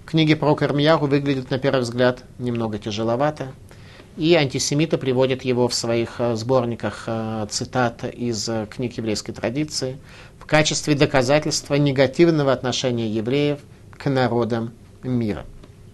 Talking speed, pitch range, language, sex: 115 wpm, 110-145 Hz, Russian, male